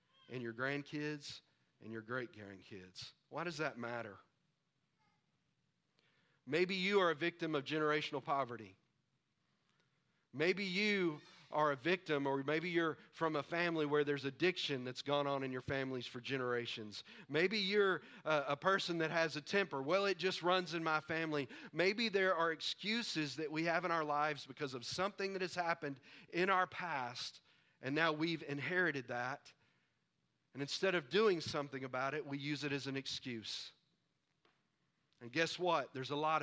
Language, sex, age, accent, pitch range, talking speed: English, male, 40-59, American, 140-180 Hz, 160 wpm